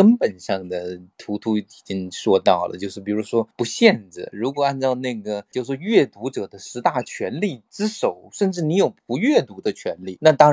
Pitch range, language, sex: 105-150 Hz, Chinese, male